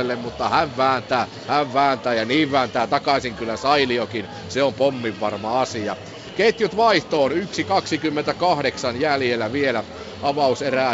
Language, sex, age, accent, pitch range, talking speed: Finnish, male, 50-69, native, 130-140 Hz, 125 wpm